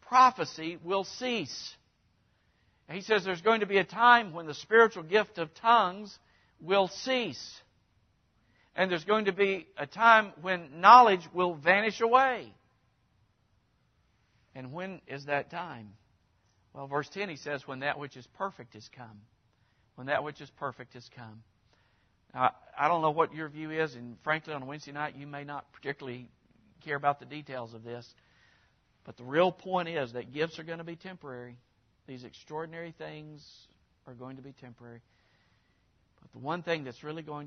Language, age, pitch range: English, 50-69, 125-175 Hz